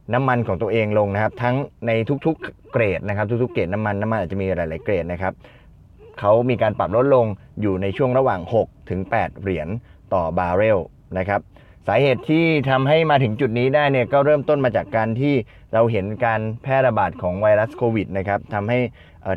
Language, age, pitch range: Thai, 20-39, 100-125 Hz